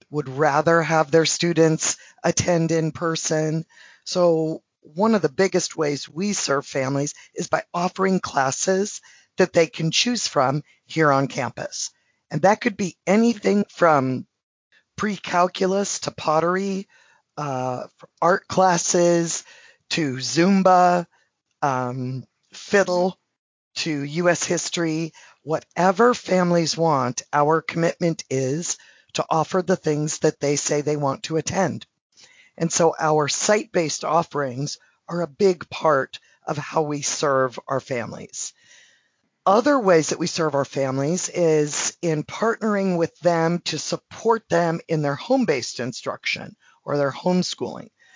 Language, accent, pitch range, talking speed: English, American, 145-185 Hz, 125 wpm